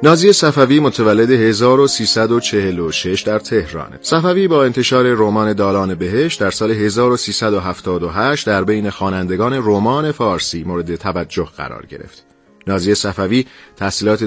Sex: male